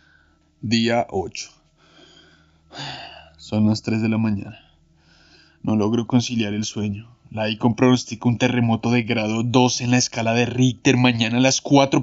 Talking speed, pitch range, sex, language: 150 wpm, 105-120 Hz, male, Spanish